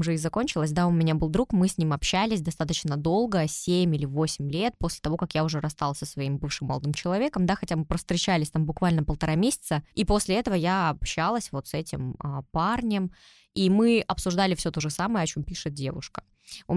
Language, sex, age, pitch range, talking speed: Russian, female, 20-39, 155-195 Hz, 210 wpm